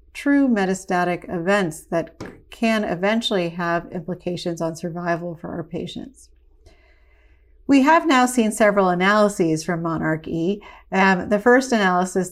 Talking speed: 125 wpm